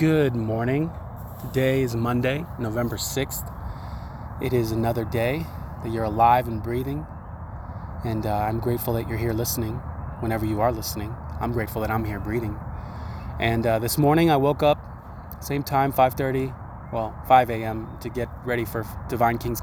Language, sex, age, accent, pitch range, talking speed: English, male, 20-39, American, 105-125 Hz, 160 wpm